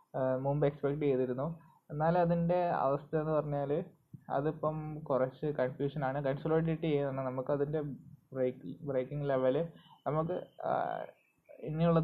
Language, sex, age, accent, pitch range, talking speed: Malayalam, male, 20-39, native, 130-160 Hz, 95 wpm